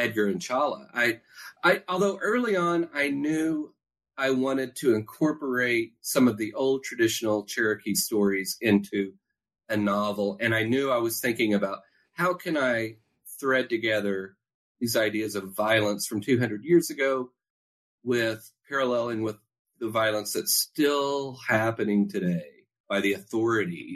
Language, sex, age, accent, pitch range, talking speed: English, male, 40-59, American, 110-145 Hz, 140 wpm